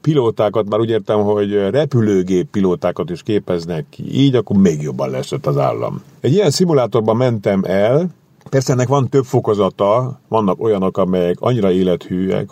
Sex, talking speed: male, 155 wpm